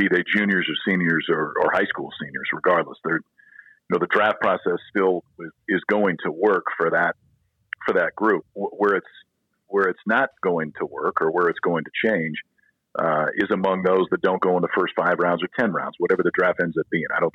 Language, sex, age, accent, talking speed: English, male, 50-69, American, 225 wpm